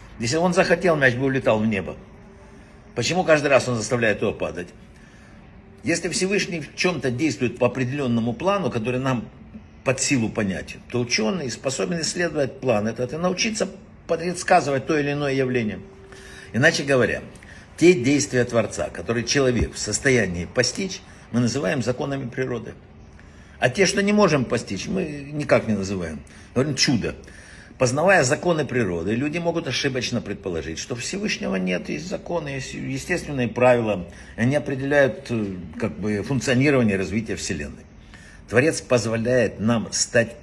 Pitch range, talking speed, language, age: 105-145 Hz, 140 wpm, Russian, 60-79